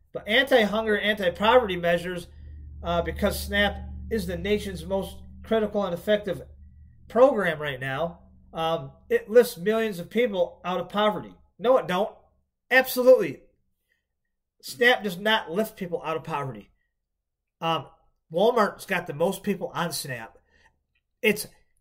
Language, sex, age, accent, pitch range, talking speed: English, male, 40-59, American, 165-215 Hz, 130 wpm